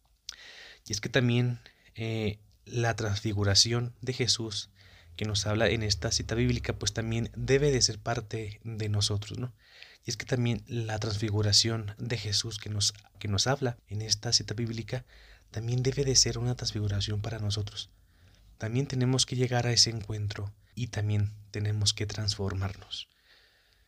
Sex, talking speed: male, 155 wpm